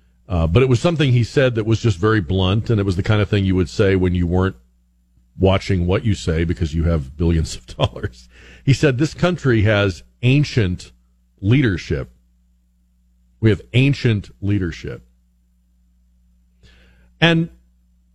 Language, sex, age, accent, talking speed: English, male, 50-69, American, 155 wpm